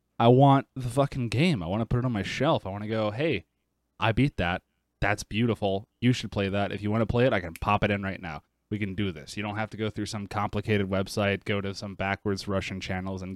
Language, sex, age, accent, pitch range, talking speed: English, male, 20-39, American, 100-130 Hz, 270 wpm